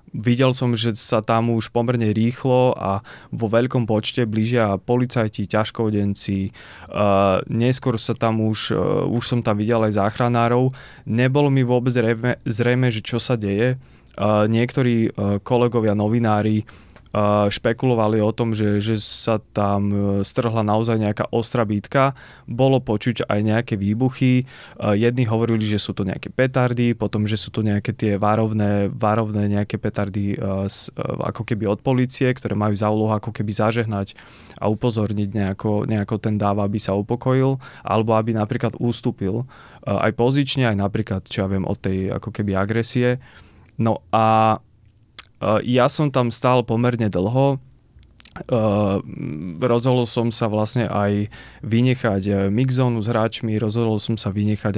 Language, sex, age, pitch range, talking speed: Slovak, male, 20-39, 105-120 Hz, 140 wpm